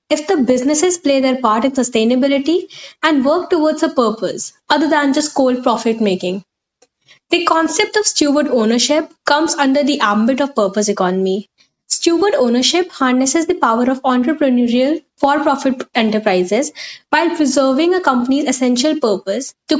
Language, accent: English, Indian